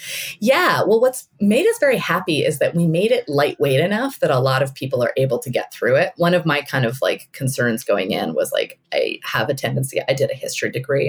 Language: English